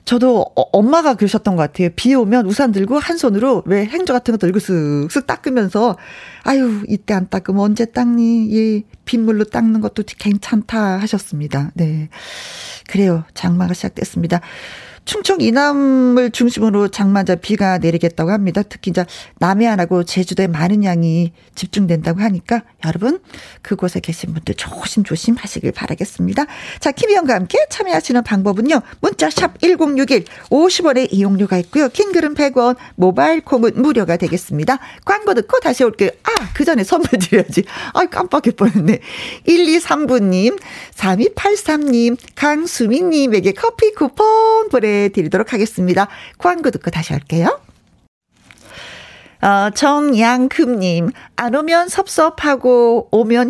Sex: female